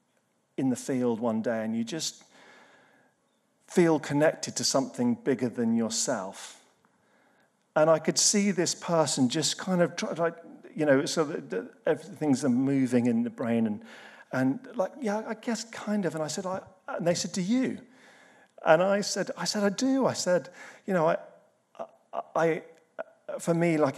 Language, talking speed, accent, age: English, 175 wpm, British, 40-59